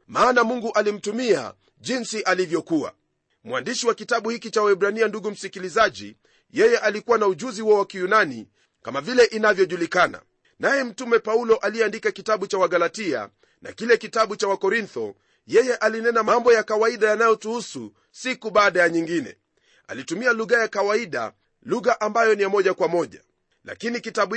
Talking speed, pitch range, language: 145 wpm, 200-230 Hz, Swahili